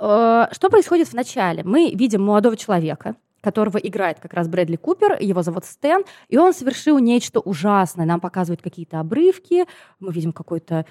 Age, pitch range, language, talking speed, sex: 20-39, 180-245 Hz, Russian, 160 wpm, female